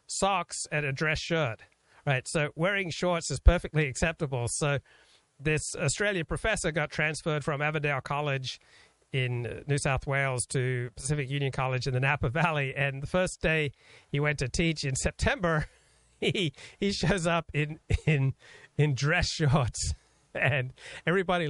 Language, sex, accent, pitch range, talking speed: English, male, American, 130-160 Hz, 150 wpm